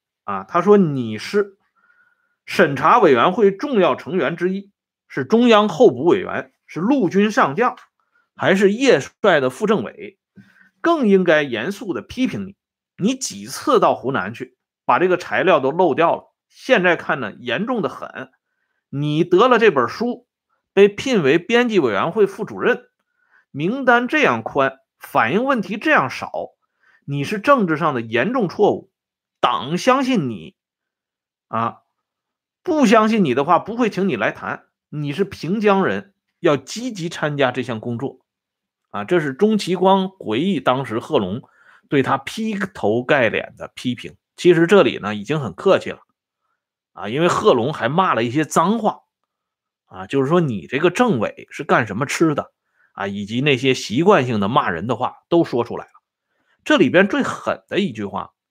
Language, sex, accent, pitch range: Swedish, male, Chinese, 155-235 Hz